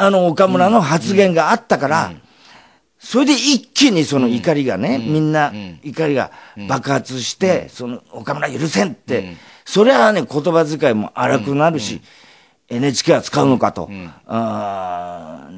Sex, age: male, 40-59